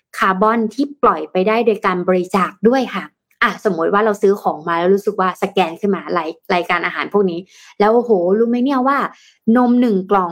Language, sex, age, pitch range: Thai, female, 20-39, 180-225 Hz